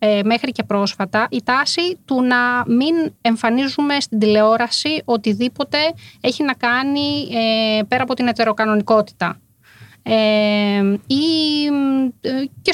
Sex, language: female, Greek